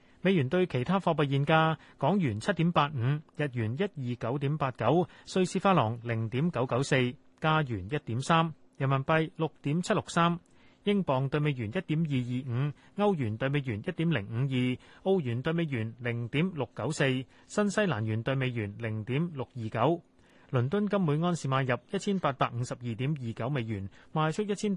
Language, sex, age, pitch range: Chinese, male, 30-49, 125-170 Hz